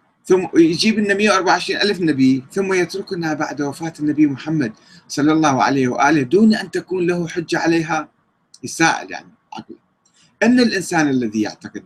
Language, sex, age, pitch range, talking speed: Arabic, male, 30-49, 125-190 Hz, 140 wpm